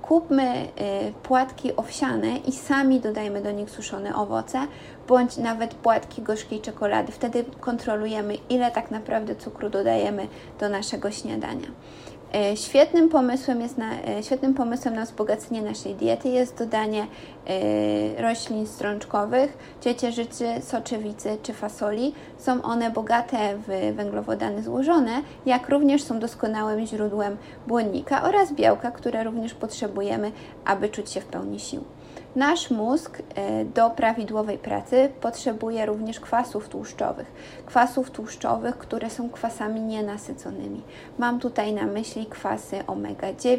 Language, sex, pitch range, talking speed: Polish, female, 210-245 Hz, 115 wpm